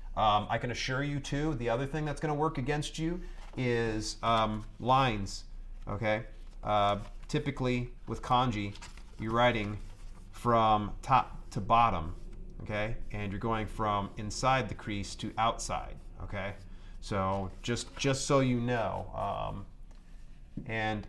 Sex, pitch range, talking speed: male, 95-130 Hz, 135 wpm